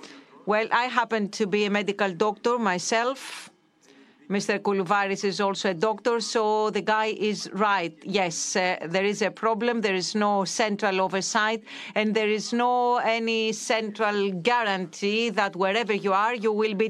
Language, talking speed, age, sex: Greek, 160 wpm, 40-59, female